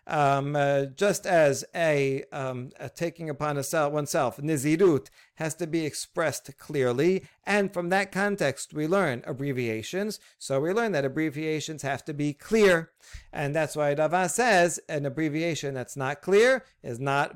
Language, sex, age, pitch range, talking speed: English, male, 40-59, 140-175 Hz, 160 wpm